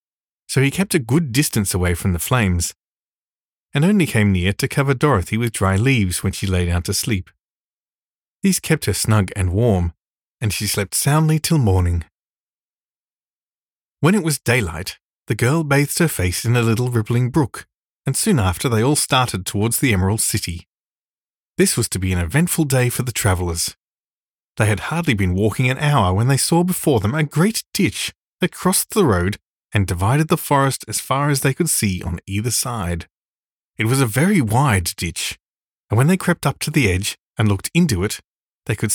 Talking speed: 190 wpm